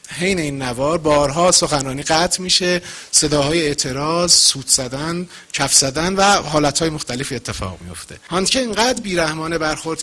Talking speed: 130 wpm